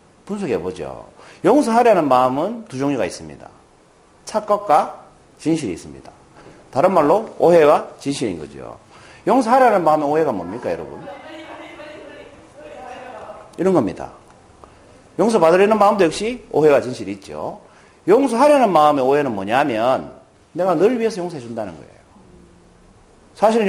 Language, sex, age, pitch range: Korean, male, 40-59, 145-245 Hz